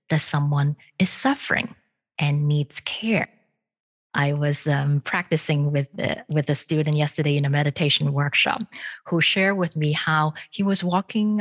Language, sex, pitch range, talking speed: English, female, 150-185 Hz, 155 wpm